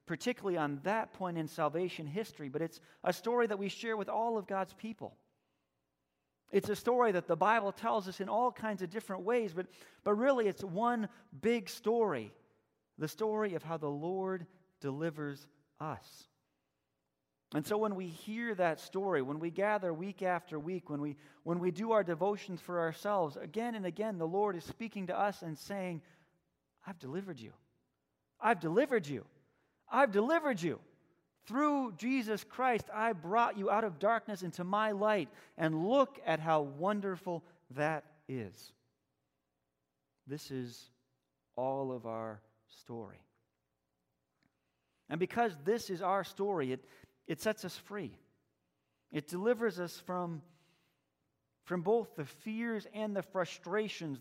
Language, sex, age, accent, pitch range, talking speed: English, male, 30-49, American, 145-210 Hz, 150 wpm